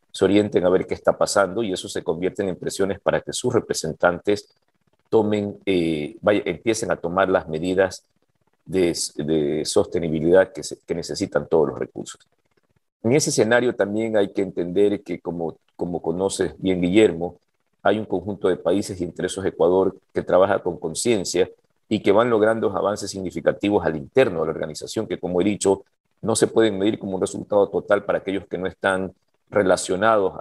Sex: male